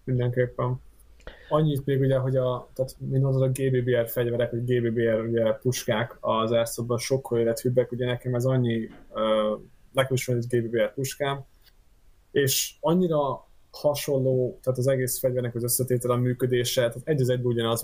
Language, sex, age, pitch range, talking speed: Hungarian, male, 20-39, 115-130 Hz, 145 wpm